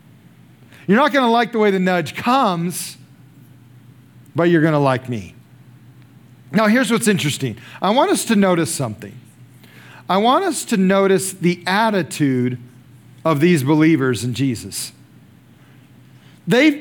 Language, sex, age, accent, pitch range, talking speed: English, male, 40-59, American, 130-195 Hz, 140 wpm